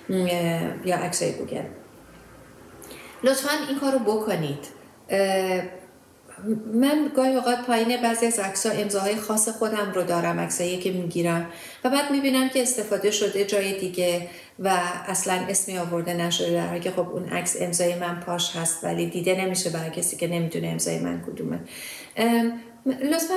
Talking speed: 145 wpm